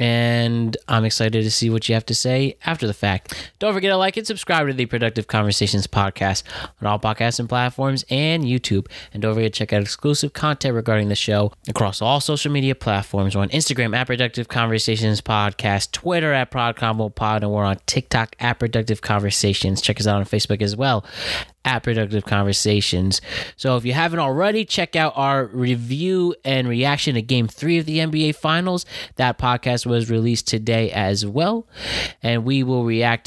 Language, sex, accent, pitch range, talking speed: English, male, American, 110-135 Hz, 185 wpm